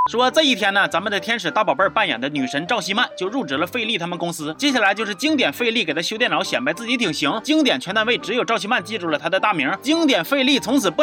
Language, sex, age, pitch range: Chinese, male, 30-49, 195-275 Hz